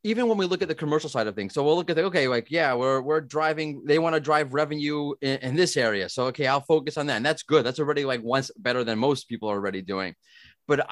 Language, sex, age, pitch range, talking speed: English, male, 30-49, 130-165 Hz, 280 wpm